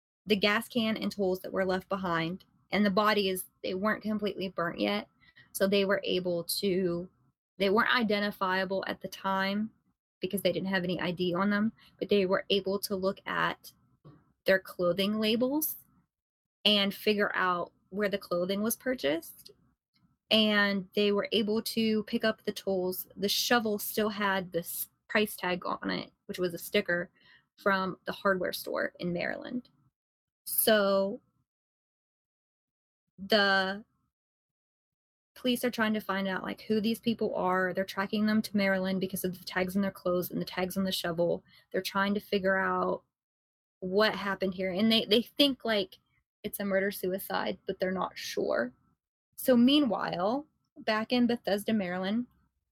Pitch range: 190-215 Hz